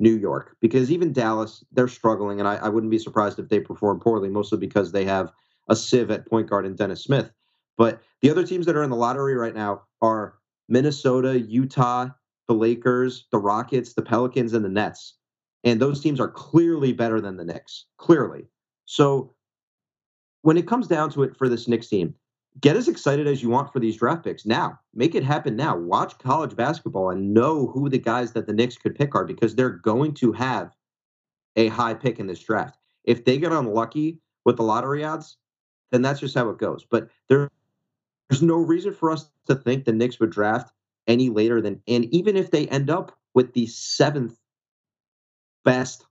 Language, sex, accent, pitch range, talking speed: English, male, American, 110-140 Hz, 200 wpm